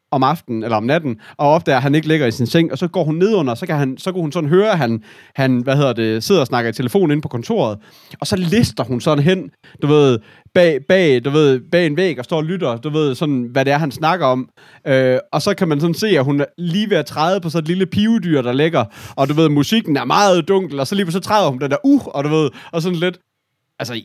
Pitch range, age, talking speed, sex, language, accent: 130-175 Hz, 30-49, 285 wpm, male, Danish, native